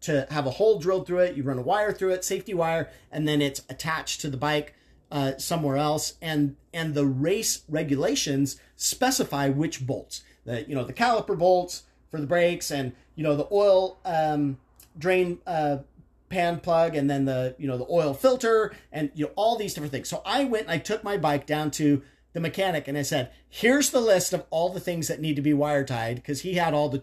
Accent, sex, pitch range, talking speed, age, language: American, male, 135-170 Hz, 220 wpm, 40-59, English